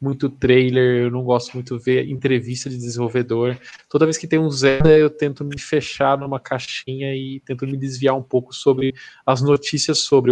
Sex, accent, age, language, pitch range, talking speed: male, Brazilian, 20-39, Portuguese, 130-160 Hz, 190 wpm